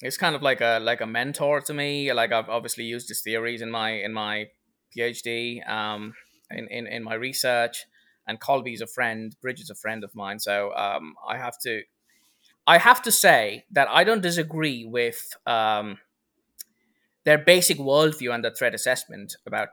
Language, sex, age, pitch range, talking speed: English, male, 20-39, 115-155 Hz, 185 wpm